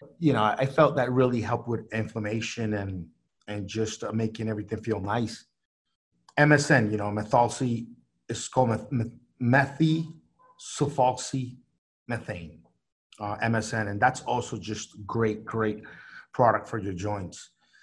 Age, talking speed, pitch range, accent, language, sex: 30-49, 125 wpm, 105-135 Hz, American, English, male